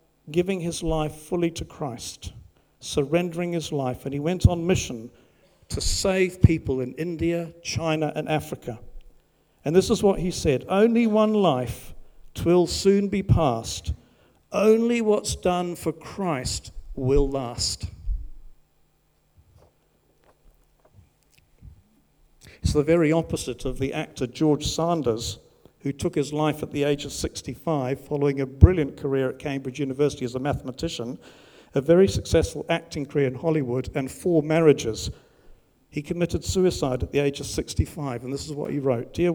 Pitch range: 125-170 Hz